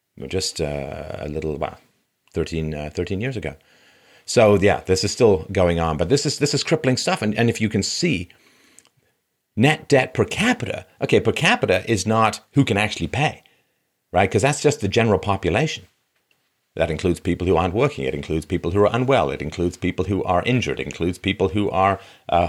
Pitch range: 80-105 Hz